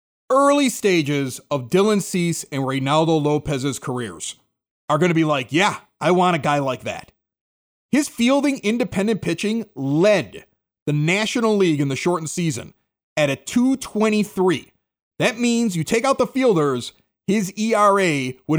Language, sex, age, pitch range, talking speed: English, male, 30-49, 155-220 Hz, 150 wpm